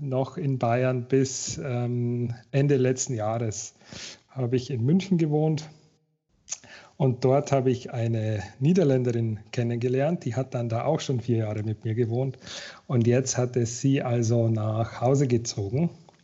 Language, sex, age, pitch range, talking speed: German, male, 40-59, 120-140 Hz, 145 wpm